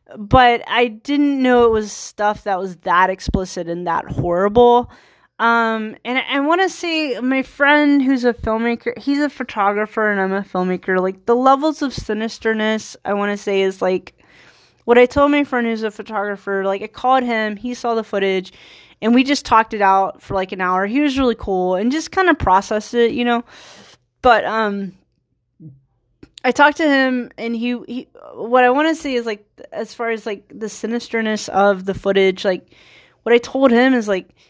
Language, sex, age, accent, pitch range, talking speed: English, female, 20-39, American, 190-245 Hz, 200 wpm